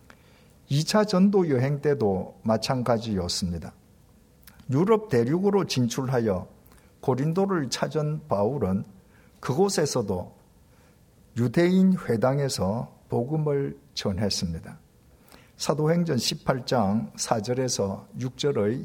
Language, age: Korean, 50-69